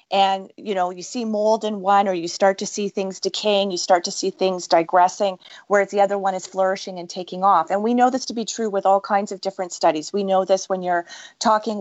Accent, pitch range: American, 180-205 Hz